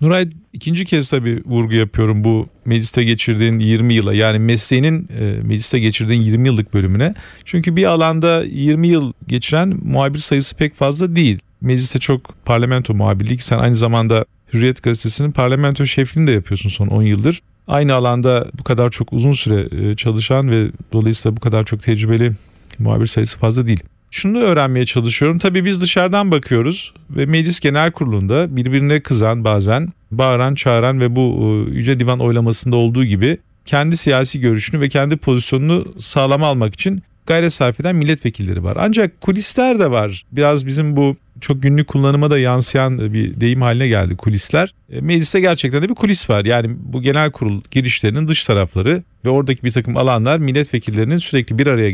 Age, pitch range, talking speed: 40-59, 110-145 Hz, 160 wpm